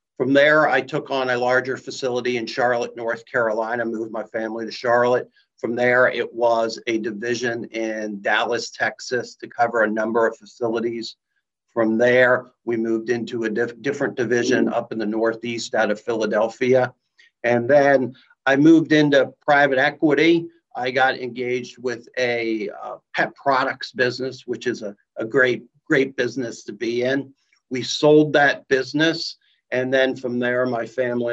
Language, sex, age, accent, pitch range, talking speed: English, male, 50-69, American, 115-135 Hz, 160 wpm